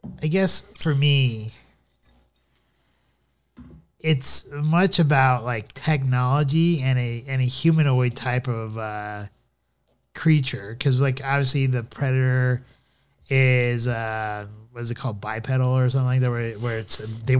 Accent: American